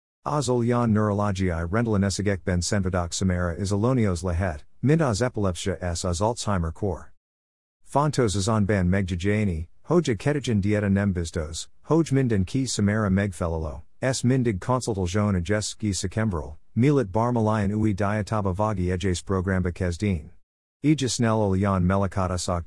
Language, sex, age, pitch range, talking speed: Hungarian, male, 50-69, 90-110 Hz, 125 wpm